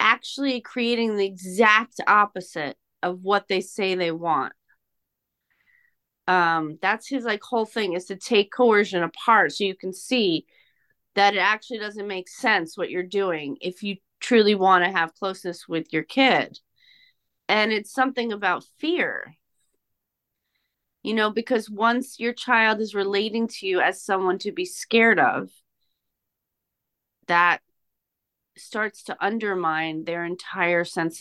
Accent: American